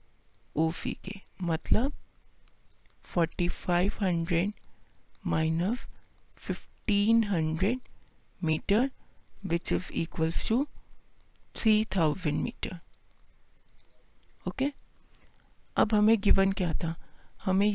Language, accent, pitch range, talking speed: Hindi, native, 175-205 Hz, 80 wpm